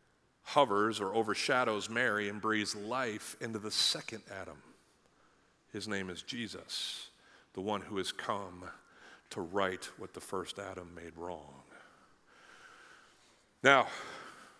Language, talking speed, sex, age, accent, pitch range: English, 120 wpm, male, 40-59, American, 105-130 Hz